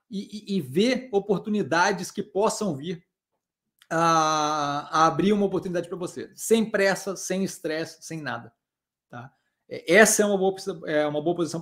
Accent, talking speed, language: Brazilian, 155 wpm, Portuguese